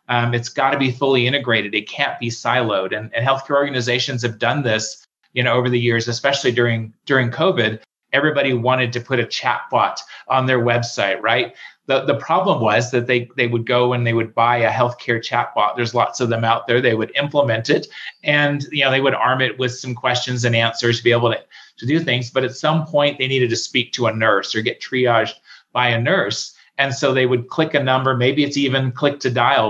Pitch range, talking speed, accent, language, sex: 120-140 Hz, 225 wpm, American, English, male